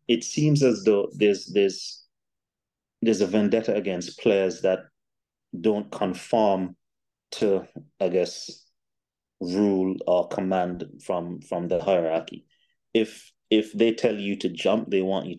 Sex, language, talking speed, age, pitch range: male, English, 135 wpm, 30-49, 90-105 Hz